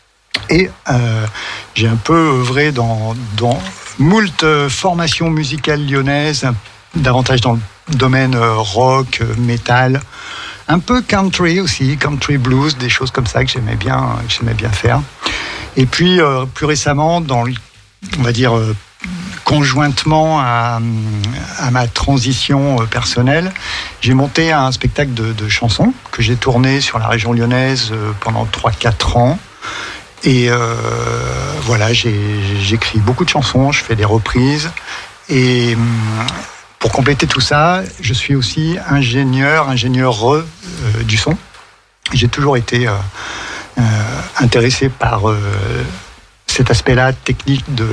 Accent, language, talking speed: French, French, 130 wpm